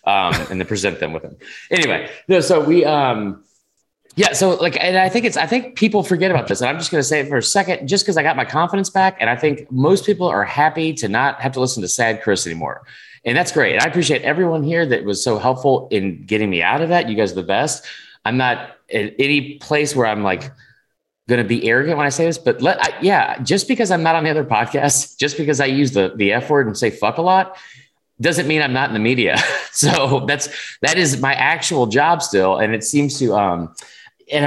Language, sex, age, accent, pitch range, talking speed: English, male, 30-49, American, 105-155 Hz, 250 wpm